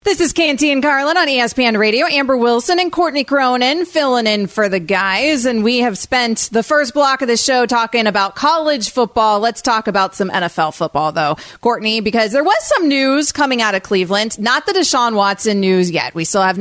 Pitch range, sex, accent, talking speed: 205-270 Hz, female, American, 205 wpm